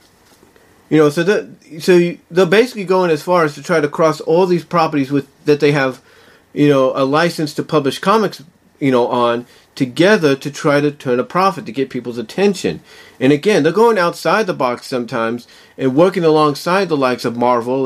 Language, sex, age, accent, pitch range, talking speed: English, male, 40-59, American, 130-170 Hz, 195 wpm